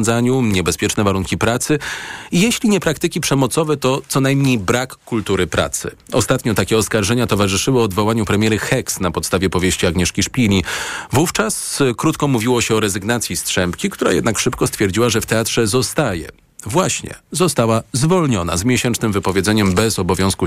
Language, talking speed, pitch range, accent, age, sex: Polish, 145 wpm, 95-130 Hz, native, 40-59, male